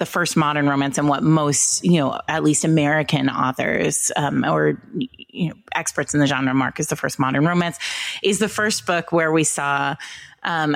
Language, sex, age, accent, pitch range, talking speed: English, female, 30-49, American, 145-180 Hz, 195 wpm